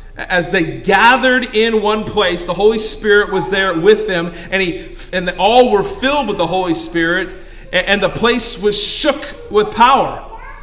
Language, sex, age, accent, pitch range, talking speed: English, male, 40-59, American, 175-225 Hz, 175 wpm